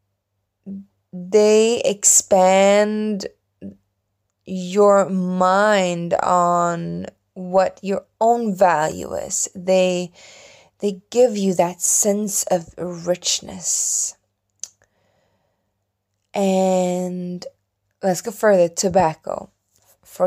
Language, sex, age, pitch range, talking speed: English, female, 20-39, 165-210 Hz, 70 wpm